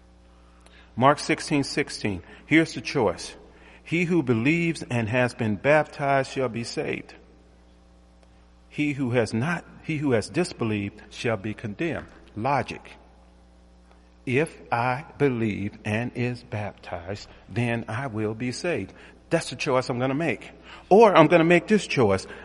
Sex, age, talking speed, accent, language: male, 50-69, 140 wpm, American, English